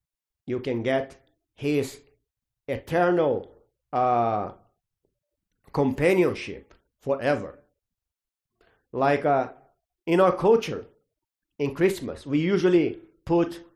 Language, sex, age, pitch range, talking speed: English, male, 50-69, 125-185 Hz, 80 wpm